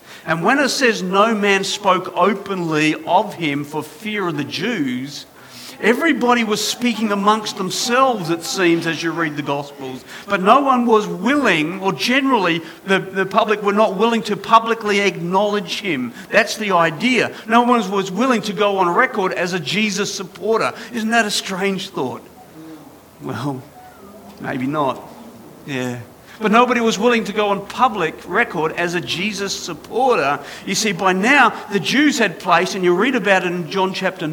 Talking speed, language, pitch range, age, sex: 170 wpm, English, 165-220 Hz, 50-69, male